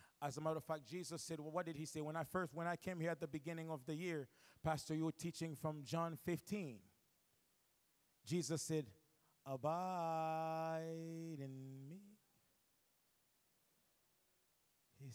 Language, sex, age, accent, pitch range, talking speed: English, male, 30-49, American, 150-195 Hz, 150 wpm